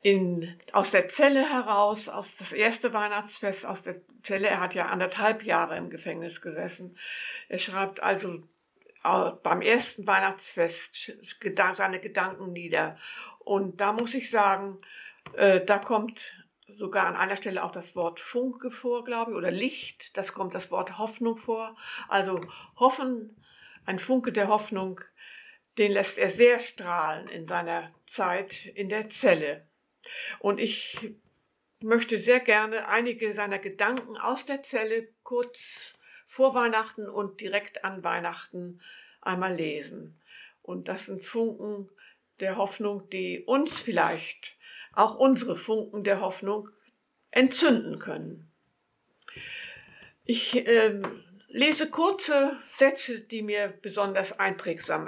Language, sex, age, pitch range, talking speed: German, female, 60-79, 190-240 Hz, 125 wpm